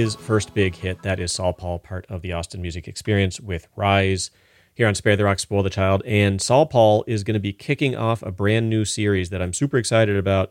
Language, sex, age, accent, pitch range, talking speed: English, male, 30-49, American, 90-115 Hz, 240 wpm